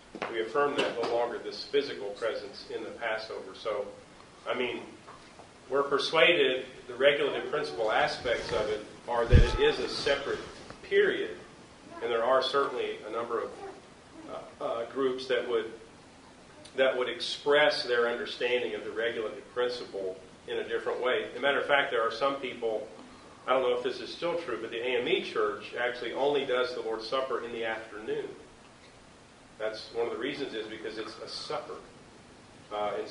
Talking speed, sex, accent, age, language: 175 wpm, male, American, 40-59, English